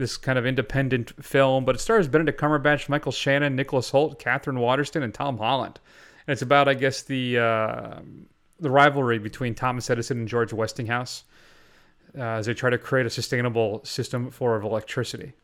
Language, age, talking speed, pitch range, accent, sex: English, 30-49, 175 wpm, 115-140 Hz, American, male